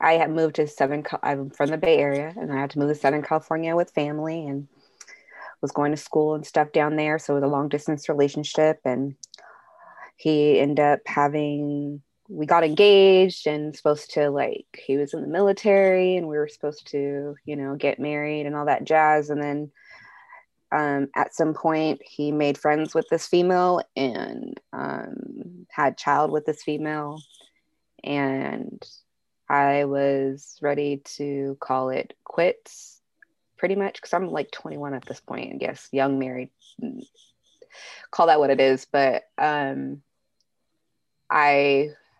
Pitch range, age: 140-160 Hz, 20-39